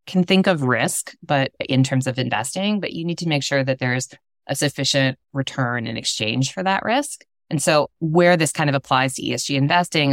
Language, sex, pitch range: English, female, 125-150 Hz